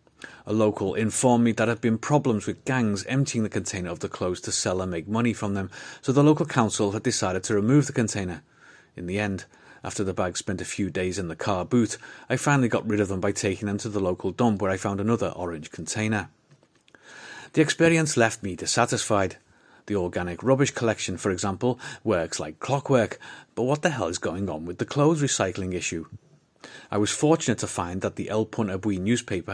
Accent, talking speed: British, 210 wpm